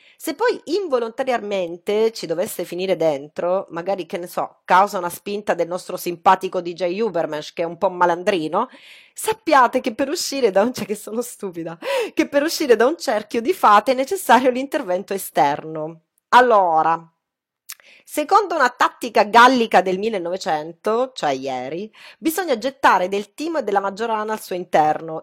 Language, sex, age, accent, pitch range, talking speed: English, female, 30-49, Italian, 180-260 Hz, 155 wpm